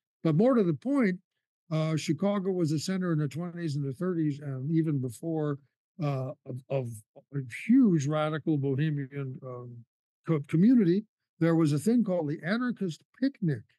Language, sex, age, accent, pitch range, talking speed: English, male, 60-79, American, 140-170 Hz, 155 wpm